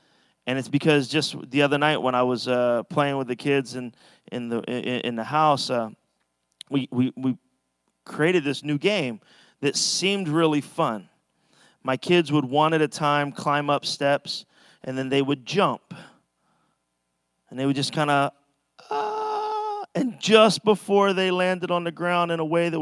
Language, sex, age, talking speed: English, male, 30-49, 175 wpm